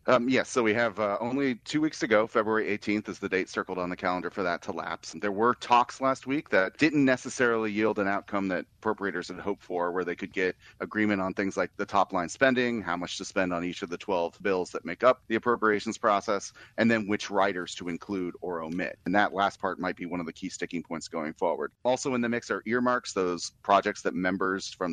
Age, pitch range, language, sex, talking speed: 30-49, 90-115 Hz, English, male, 245 wpm